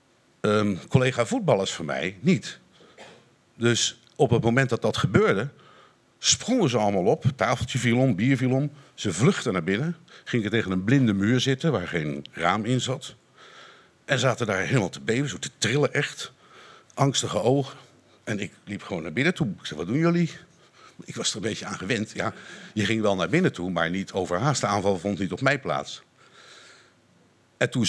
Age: 50-69